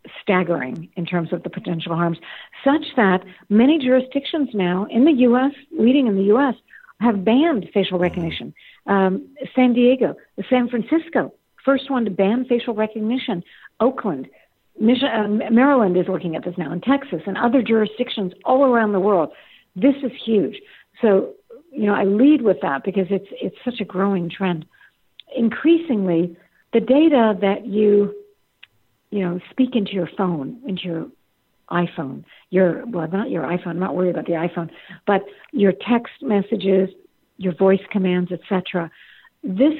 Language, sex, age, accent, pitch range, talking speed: English, female, 60-79, American, 185-245 Hz, 155 wpm